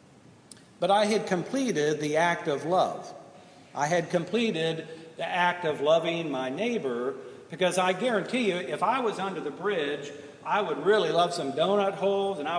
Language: English